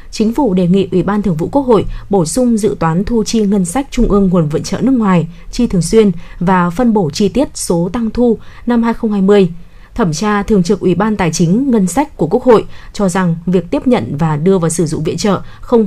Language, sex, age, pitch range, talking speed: Vietnamese, female, 20-39, 175-225 Hz, 240 wpm